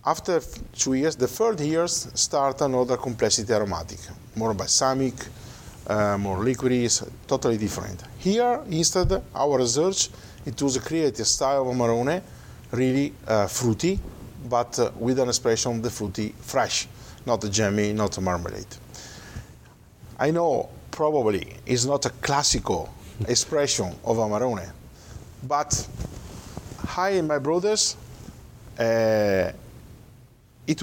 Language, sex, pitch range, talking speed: English, male, 105-130 Hz, 120 wpm